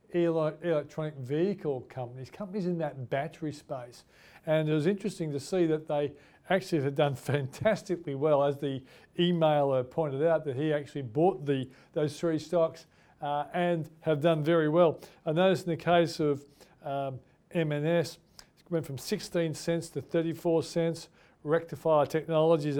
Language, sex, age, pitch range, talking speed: English, male, 40-59, 145-175 Hz, 155 wpm